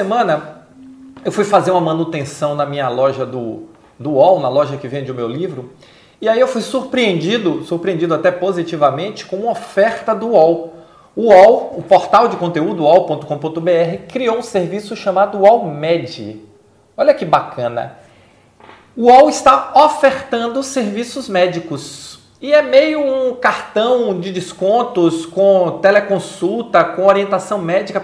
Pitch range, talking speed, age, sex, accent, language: 165-235 Hz, 140 wpm, 40-59, male, Brazilian, Portuguese